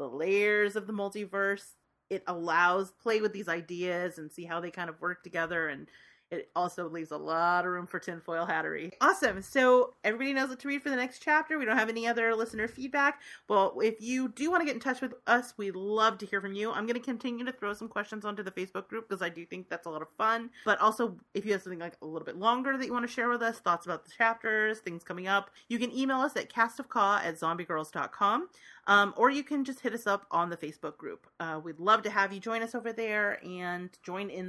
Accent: American